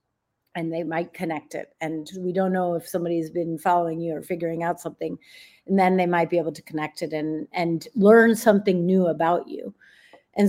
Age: 30-49